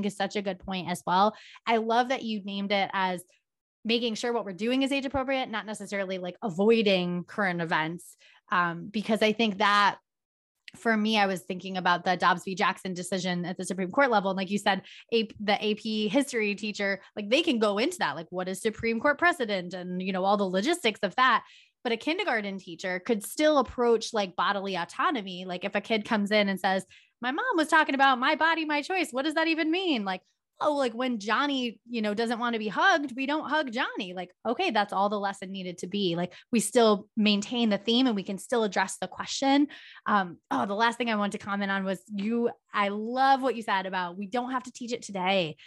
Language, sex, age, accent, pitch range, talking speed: English, female, 20-39, American, 190-240 Hz, 225 wpm